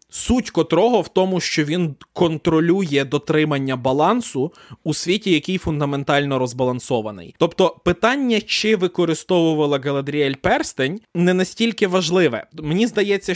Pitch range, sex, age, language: 145-190 Hz, male, 20-39, Ukrainian